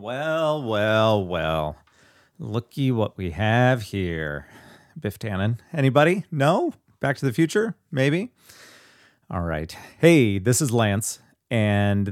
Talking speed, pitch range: 120 wpm, 100-135 Hz